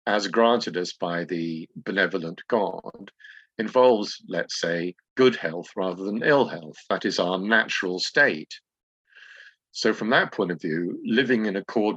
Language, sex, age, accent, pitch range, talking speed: English, male, 50-69, British, 90-125 Hz, 150 wpm